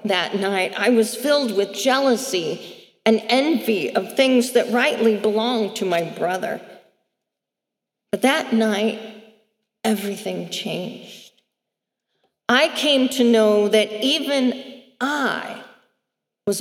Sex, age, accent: female, 40-59, American